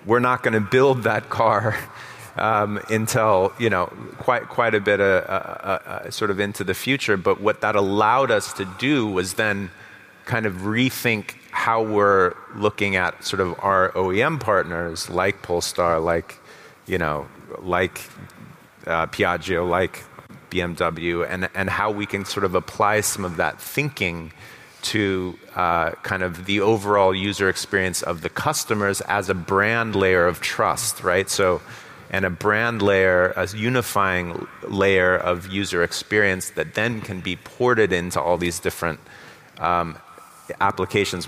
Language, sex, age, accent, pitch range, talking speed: English, male, 30-49, American, 90-105 Hz, 155 wpm